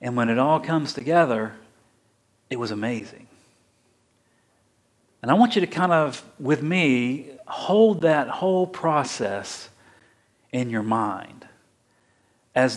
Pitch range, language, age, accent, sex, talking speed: 115-160 Hz, English, 50-69, American, male, 120 wpm